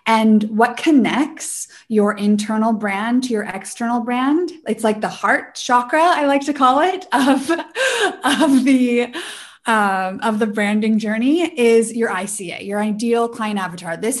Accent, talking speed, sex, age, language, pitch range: American, 140 wpm, female, 20-39, English, 195-250 Hz